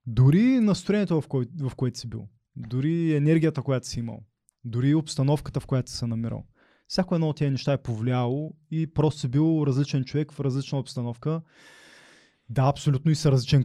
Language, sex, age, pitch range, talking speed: Bulgarian, male, 20-39, 120-145 Hz, 175 wpm